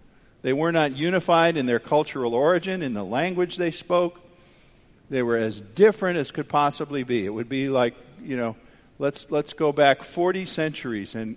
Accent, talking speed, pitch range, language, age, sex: American, 180 wpm, 115-160 Hz, English, 50-69, male